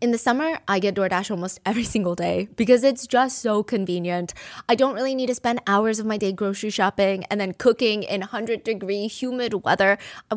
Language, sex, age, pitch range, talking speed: English, female, 20-39, 190-235 Hz, 210 wpm